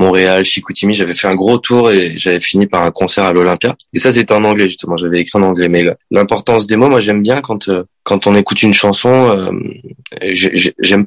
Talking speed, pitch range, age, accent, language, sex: 220 wpm, 90-100 Hz, 20-39, French, French, male